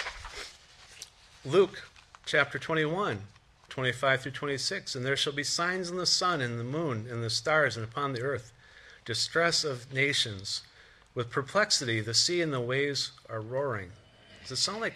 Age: 50-69